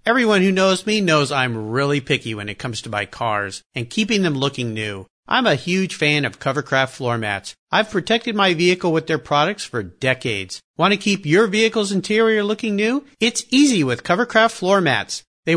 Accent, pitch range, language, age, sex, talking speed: American, 130-215 Hz, English, 50-69, male, 195 wpm